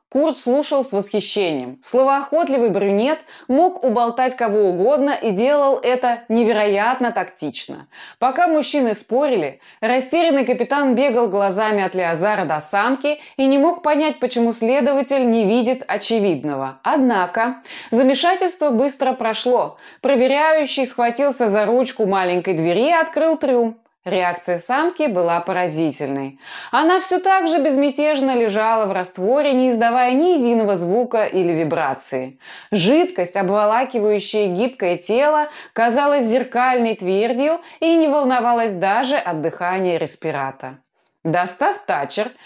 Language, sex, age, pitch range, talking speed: Russian, female, 20-39, 190-280 Hz, 115 wpm